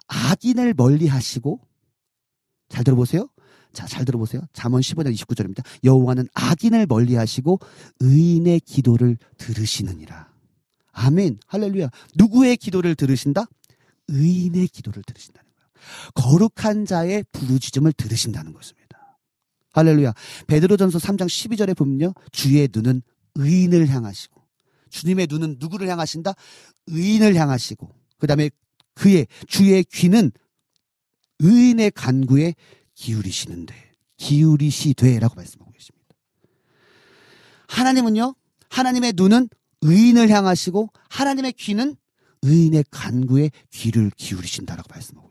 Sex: male